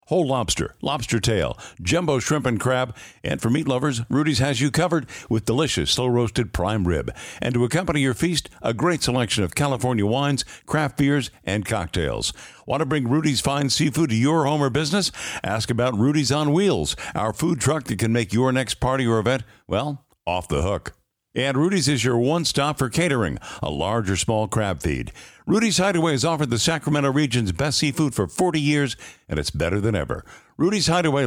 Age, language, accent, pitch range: 60-79, English, American, 115-155 Hz